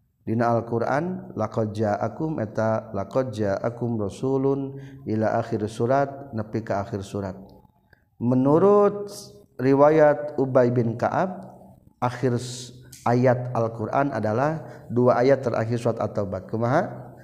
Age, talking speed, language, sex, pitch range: 40-59, 110 wpm, Indonesian, male, 110-130 Hz